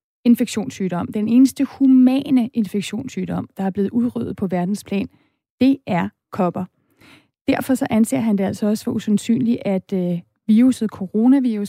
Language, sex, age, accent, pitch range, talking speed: Danish, female, 30-49, native, 195-235 Hz, 135 wpm